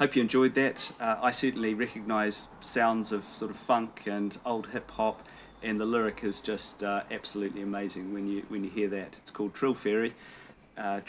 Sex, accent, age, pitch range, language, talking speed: male, British, 40-59, 100-115 Hz, English, 190 wpm